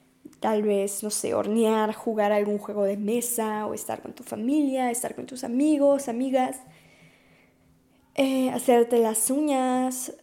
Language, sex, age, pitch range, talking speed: Spanish, female, 10-29, 200-245 Hz, 145 wpm